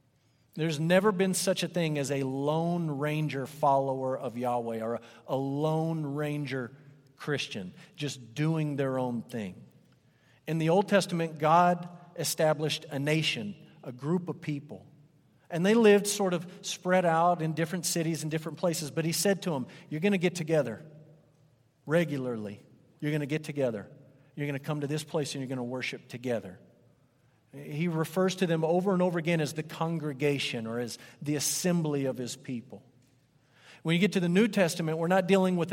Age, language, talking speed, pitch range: 50-69, English, 180 wpm, 140-185 Hz